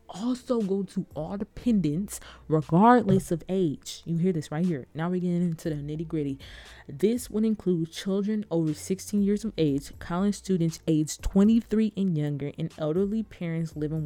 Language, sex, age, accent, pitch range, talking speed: English, female, 20-39, American, 155-190 Hz, 160 wpm